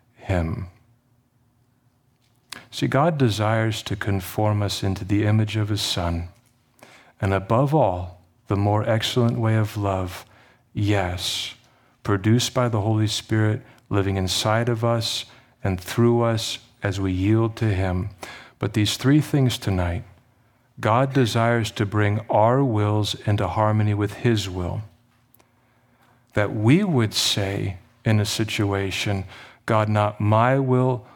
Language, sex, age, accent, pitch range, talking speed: English, male, 40-59, American, 100-120 Hz, 130 wpm